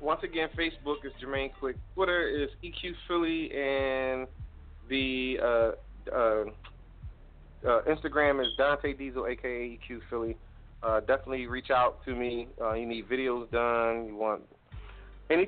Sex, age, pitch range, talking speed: male, 30-49, 120-145 Hz, 140 wpm